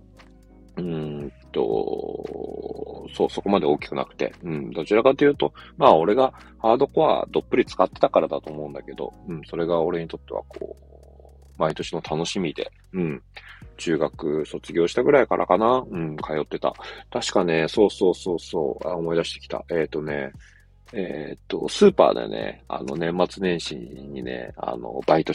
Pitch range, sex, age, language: 80-115 Hz, male, 40-59, Japanese